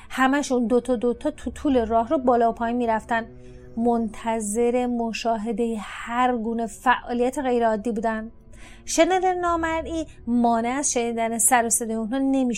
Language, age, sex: Persian, 30-49, female